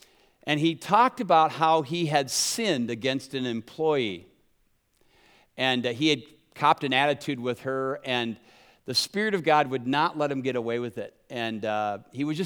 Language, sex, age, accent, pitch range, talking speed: English, male, 50-69, American, 135-180 Hz, 175 wpm